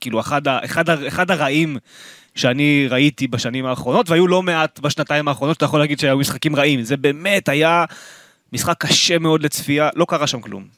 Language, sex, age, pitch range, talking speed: Hebrew, male, 20-39, 130-165 Hz, 175 wpm